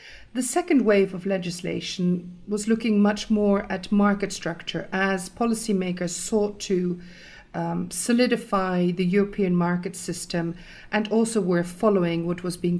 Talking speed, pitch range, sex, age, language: 135 wpm, 175-205 Hz, female, 50-69, English